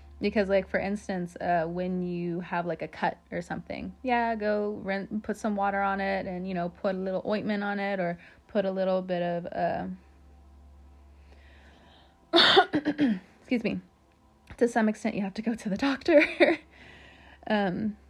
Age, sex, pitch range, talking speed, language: 20-39, female, 180-230 Hz, 165 wpm, English